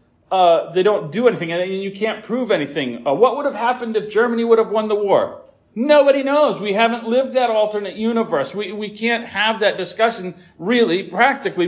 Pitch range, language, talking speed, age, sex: 175-220 Hz, English, 195 wpm, 40-59, male